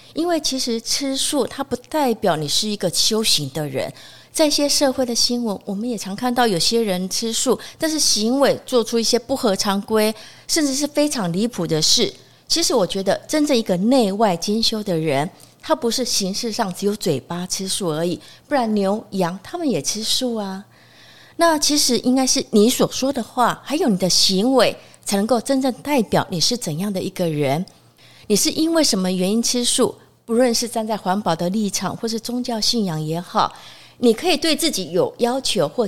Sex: female